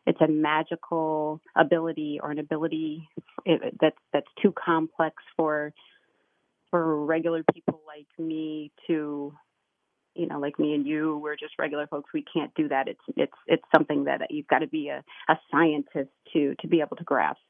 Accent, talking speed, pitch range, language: American, 170 wpm, 150-170 Hz, English